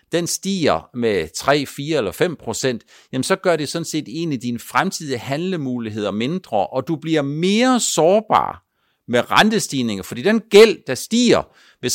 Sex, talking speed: male, 165 wpm